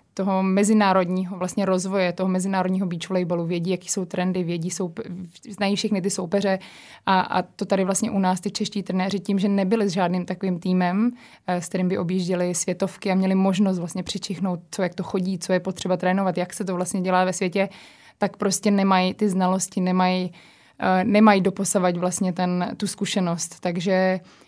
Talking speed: 180 wpm